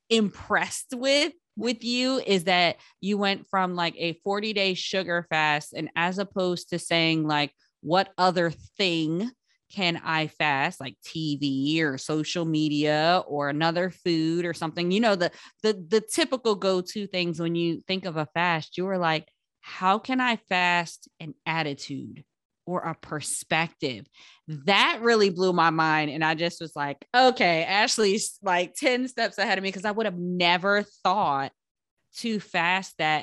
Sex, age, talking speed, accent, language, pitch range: female, 20-39, 165 wpm, American, English, 160-195 Hz